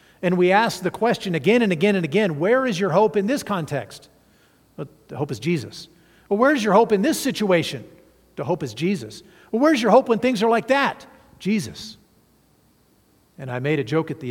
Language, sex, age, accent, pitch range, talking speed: English, male, 50-69, American, 145-195 Hz, 205 wpm